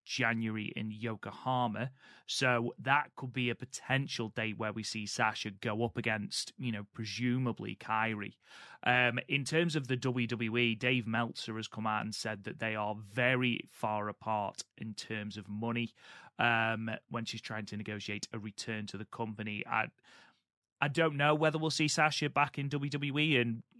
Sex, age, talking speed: male, 30-49, 170 wpm